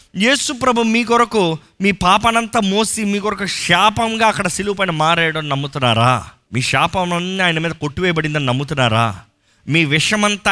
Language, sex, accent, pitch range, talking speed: Telugu, male, native, 120-195 Hz, 130 wpm